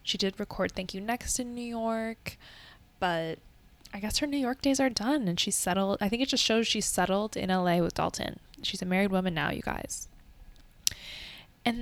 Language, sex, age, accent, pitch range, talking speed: English, female, 10-29, American, 175-215 Hz, 205 wpm